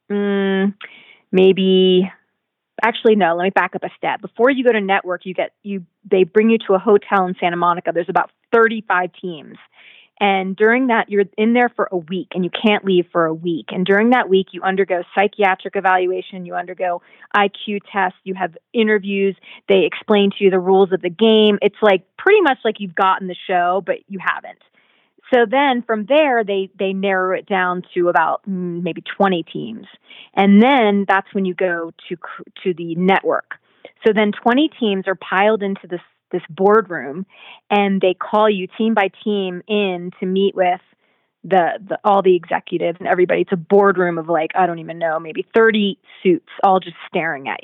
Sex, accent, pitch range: female, American, 180-210 Hz